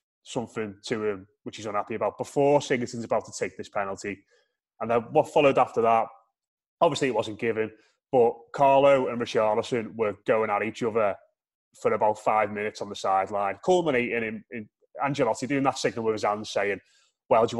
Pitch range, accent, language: 110-140 Hz, British, English